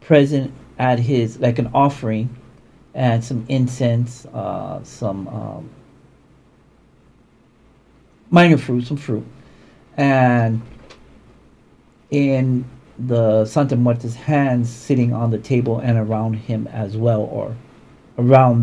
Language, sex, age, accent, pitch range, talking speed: English, male, 50-69, American, 115-140 Hz, 105 wpm